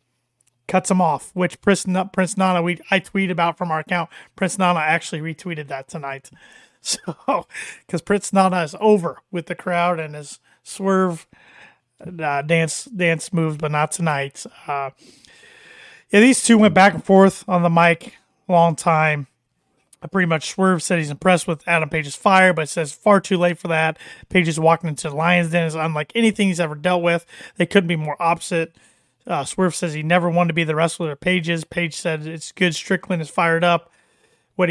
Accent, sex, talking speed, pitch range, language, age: American, male, 195 wpm, 160-185 Hz, English, 30-49